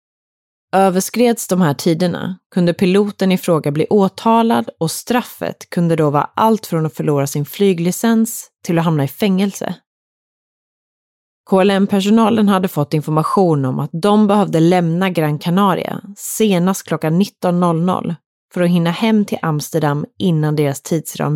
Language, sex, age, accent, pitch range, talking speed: Swedish, female, 30-49, native, 165-205 Hz, 140 wpm